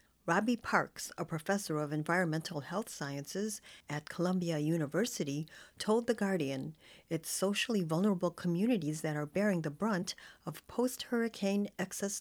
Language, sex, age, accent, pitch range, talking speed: English, female, 40-59, American, 160-210 Hz, 130 wpm